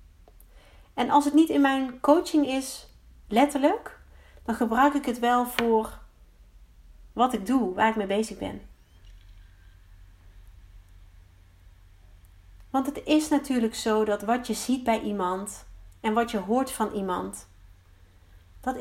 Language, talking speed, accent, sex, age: Dutch, 130 wpm, Dutch, female, 40-59